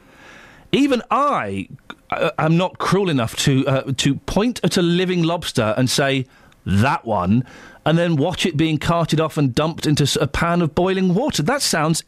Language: English